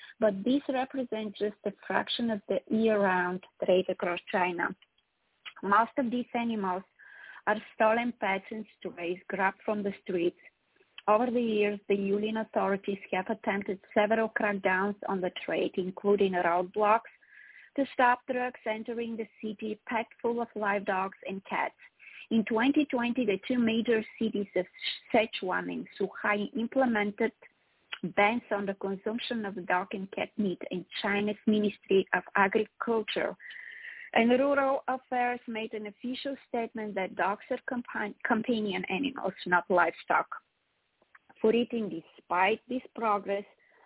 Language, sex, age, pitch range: English, female, 20-39, 195-235 Hz